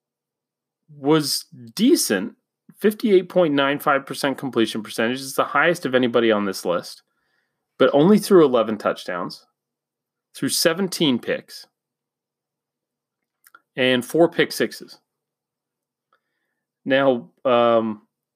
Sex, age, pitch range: male, 30-49, 110-150 Hz